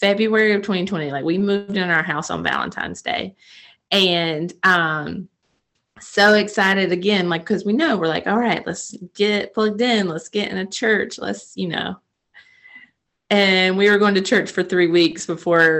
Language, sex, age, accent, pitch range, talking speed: English, female, 30-49, American, 180-215 Hz, 180 wpm